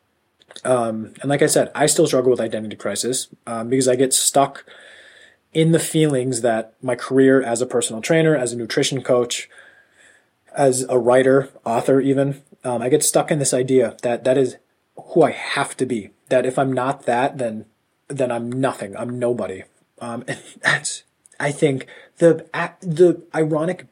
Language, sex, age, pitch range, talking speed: English, male, 20-39, 125-160 Hz, 175 wpm